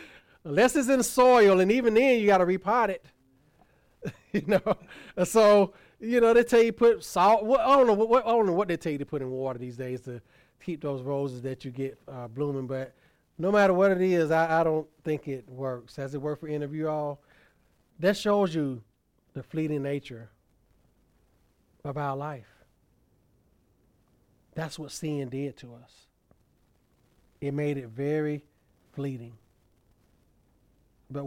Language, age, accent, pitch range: English, 30-49, American, 120-155 Hz